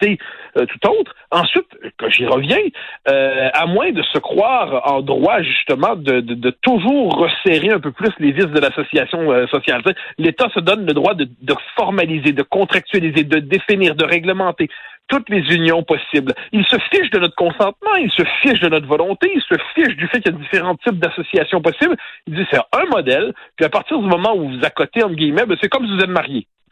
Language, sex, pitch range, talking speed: French, male, 150-235 Hz, 215 wpm